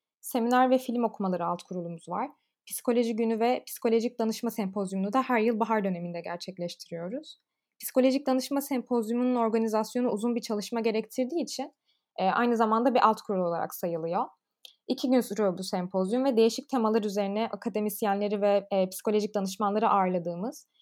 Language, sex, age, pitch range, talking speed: Turkish, female, 20-39, 205-250 Hz, 140 wpm